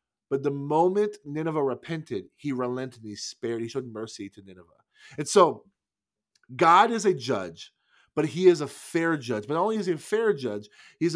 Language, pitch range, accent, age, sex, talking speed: English, 130-180 Hz, American, 30-49, male, 195 wpm